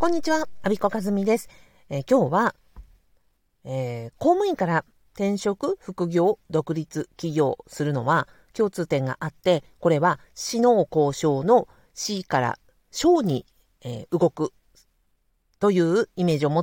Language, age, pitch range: Japanese, 50-69, 155-245 Hz